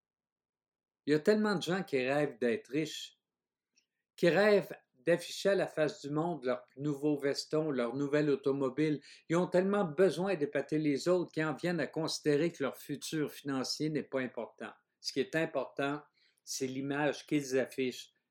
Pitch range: 130-170 Hz